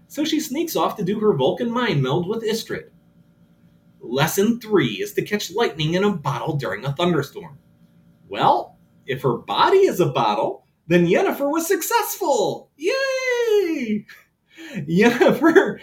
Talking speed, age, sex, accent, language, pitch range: 140 wpm, 30-49, male, American, English, 145-230 Hz